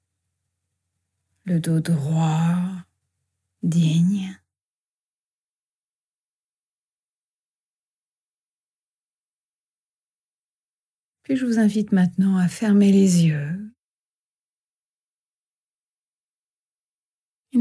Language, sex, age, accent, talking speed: French, female, 30-49, French, 50 wpm